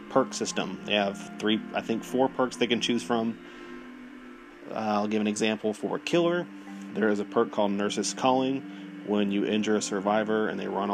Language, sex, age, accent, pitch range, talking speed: English, male, 30-49, American, 100-130 Hz, 195 wpm